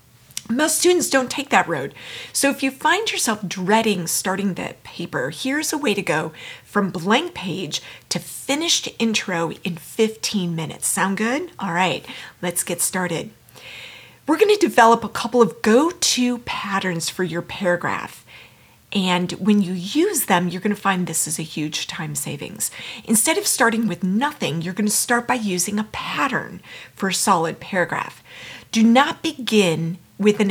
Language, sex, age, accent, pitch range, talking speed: English, female, 40-59, American, 180-245 Hz, 160 wpm